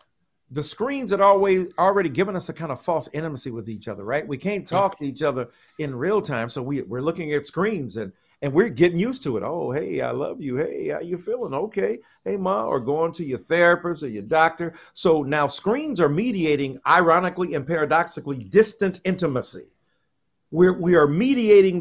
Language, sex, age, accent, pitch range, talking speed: English, male, 50-69, American, 150-235 Hz, 200 wpm